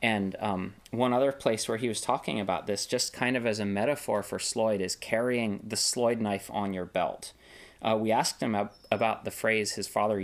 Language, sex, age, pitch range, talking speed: English, male, 30-49, 105-125 Hz, 210 wpm